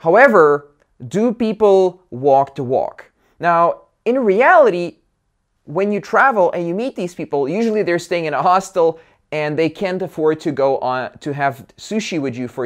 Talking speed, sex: 170 wpm, male